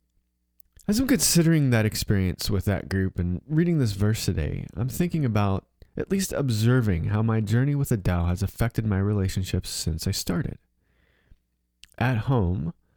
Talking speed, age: 155 wpm, 30-49